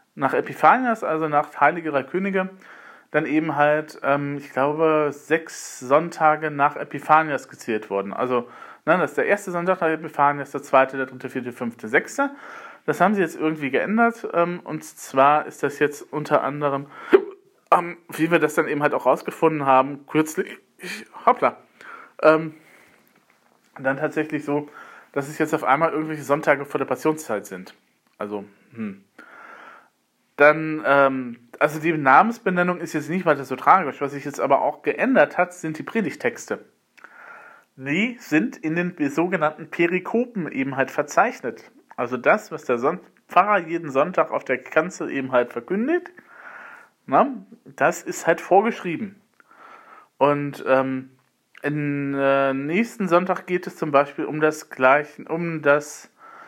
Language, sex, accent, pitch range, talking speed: German, male, German, 140-180 Hz, 150 wpm